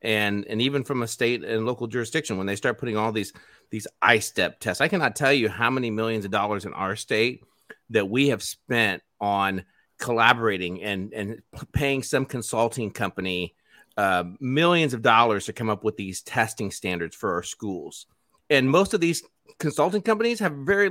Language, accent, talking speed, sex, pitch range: English, American, 185 wpm, male, 105-140 Hz